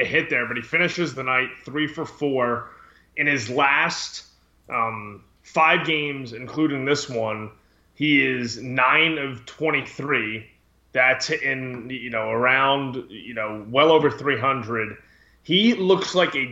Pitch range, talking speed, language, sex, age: 120-160 Hz, 140 wpm, English, male, 20-39